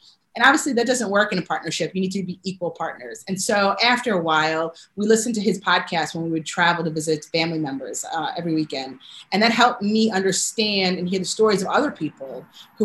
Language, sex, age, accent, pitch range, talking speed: English, female, 30-49, American, 170-215 Hz, 225 wpm